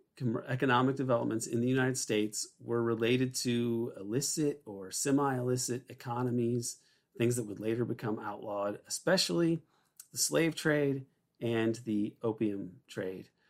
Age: 40-59